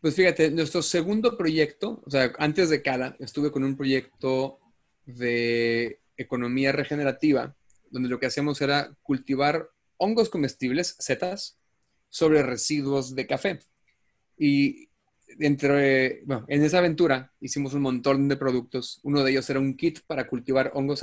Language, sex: Spanish, male